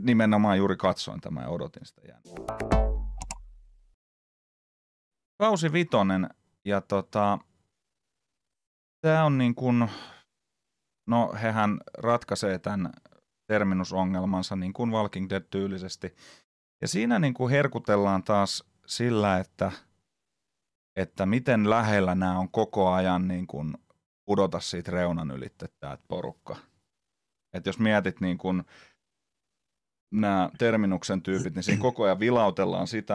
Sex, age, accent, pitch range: male, 30-49, native, 90-105 Hz